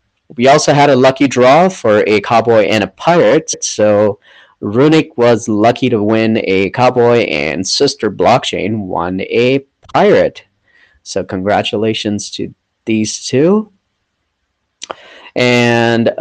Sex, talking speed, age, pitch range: male, 120 wpm, 30-49, 95-125 Hz